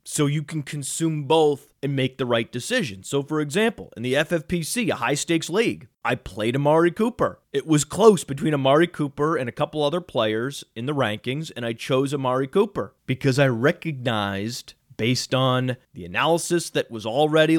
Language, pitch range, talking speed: English, 130-165 Hz, 175 wpm